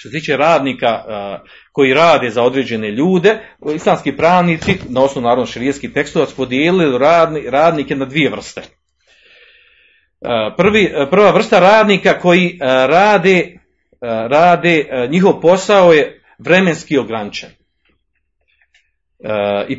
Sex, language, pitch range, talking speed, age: male, Croatian, 125-195 Hz, 105 wpm, 40-59